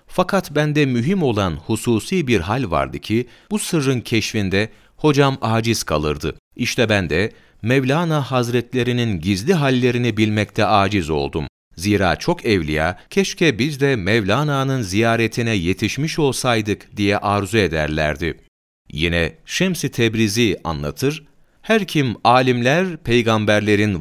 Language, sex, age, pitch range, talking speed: Turkish, male, 40-59, 95-135 Hz, 115 wpm